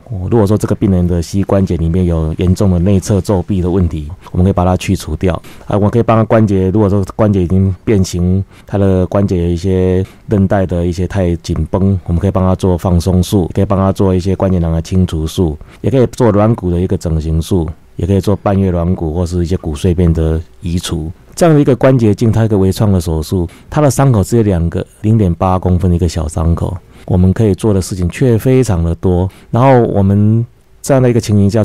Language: Chinese